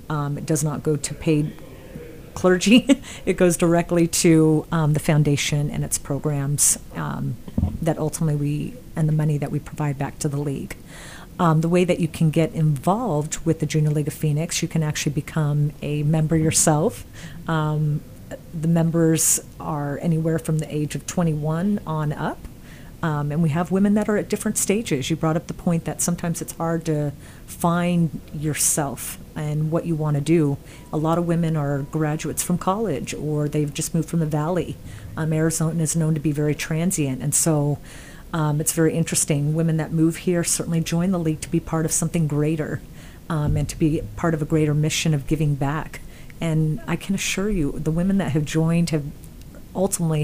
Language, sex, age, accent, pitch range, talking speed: English, female, 40-59, American, 150-165 Hz, 190 wpm